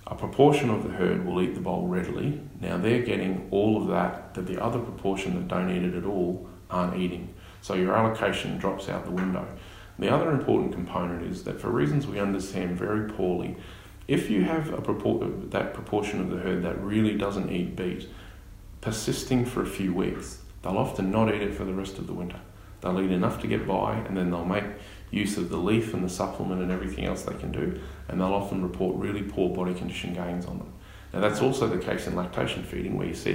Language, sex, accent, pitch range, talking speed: English, male, Australian, 90-100 Hz, 220 wpm